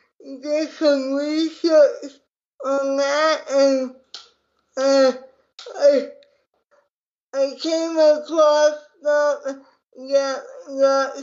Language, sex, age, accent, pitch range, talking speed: English, male, 20-39, American, 275-310 Hz, 75 wpm